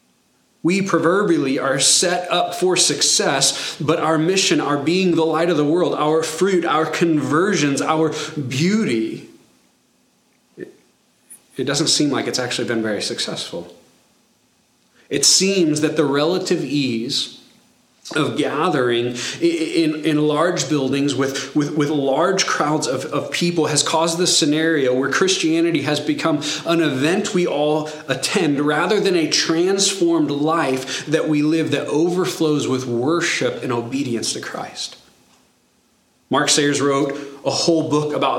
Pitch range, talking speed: 135-170 Hz, 140 wpm